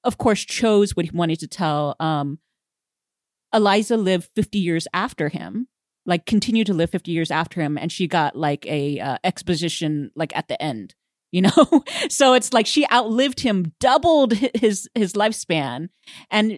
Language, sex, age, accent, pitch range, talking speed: English, female, 30-49, American, 160-215 Hz, 170 wpm